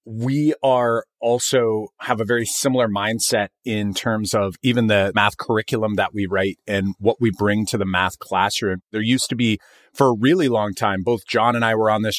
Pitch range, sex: 110-140 Hz, male